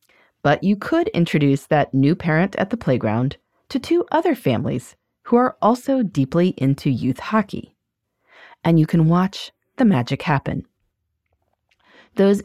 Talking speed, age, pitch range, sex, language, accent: 140 wpm, 30-49, 140-230 Hz, female, English, American